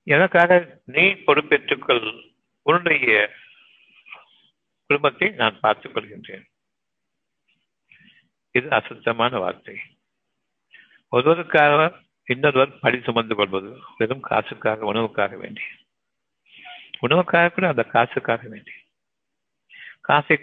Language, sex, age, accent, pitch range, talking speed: Tamil, male, 60-79, native, 115-160 Hz, 75 wpm